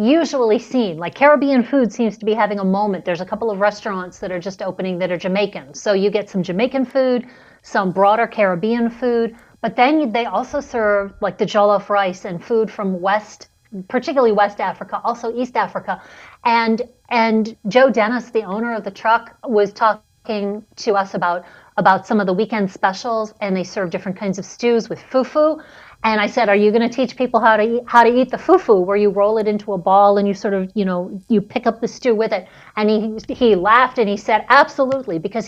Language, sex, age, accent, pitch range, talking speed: English, female, 40-59, American, 205-250 Hz, 215 wpm